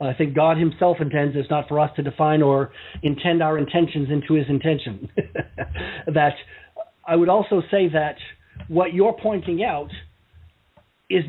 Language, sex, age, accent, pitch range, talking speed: English, male, 40-59, American, 155-210 Hz, 155 wpm